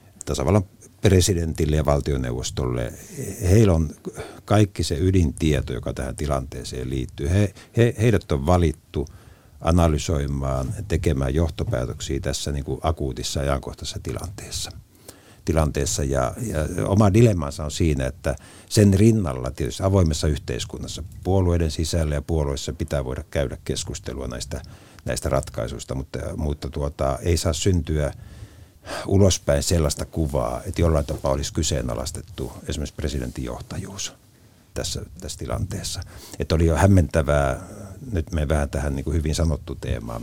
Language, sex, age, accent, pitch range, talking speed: Finnish, male, 60-79, native, 70-95 Hz, 115 wpm